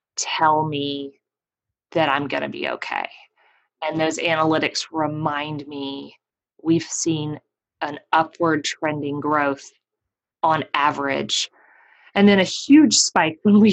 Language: English